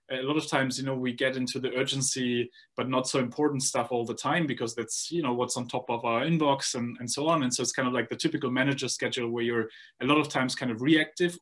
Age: 20-39